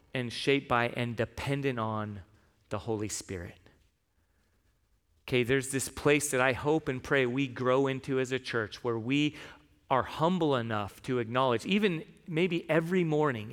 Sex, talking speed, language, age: male, 155 wpm, English, 40-59